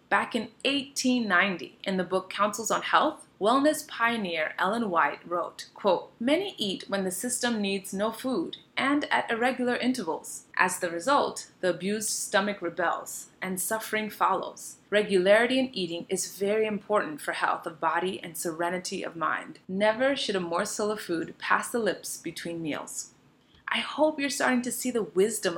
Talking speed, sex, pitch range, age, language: 160 wpm, female, 180-260 Hz, 30-49, English